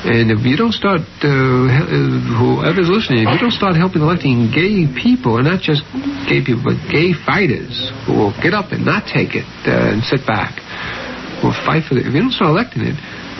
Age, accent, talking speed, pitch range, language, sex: 60-79, American, 210 wpm, 115-155 Hz, English, male